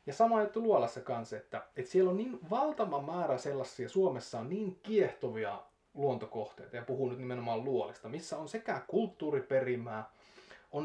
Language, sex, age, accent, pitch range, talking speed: Finnish, male, 30-49, native, 110-150 Hz, 160 wpm